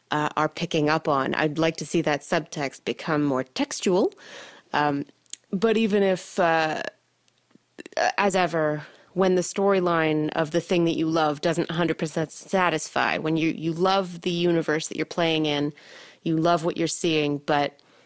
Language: English